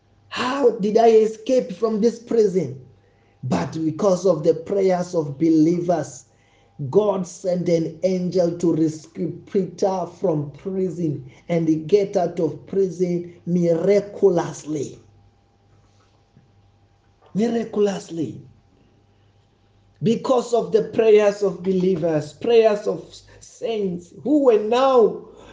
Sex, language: male, English